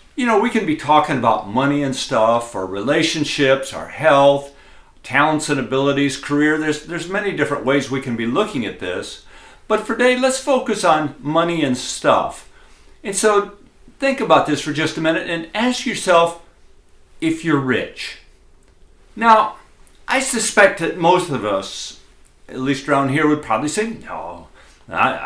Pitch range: 135-220 Hz